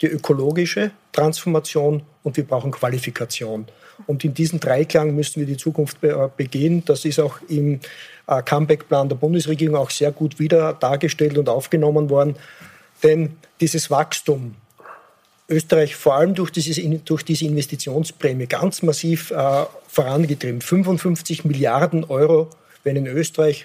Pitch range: 135-160 Hz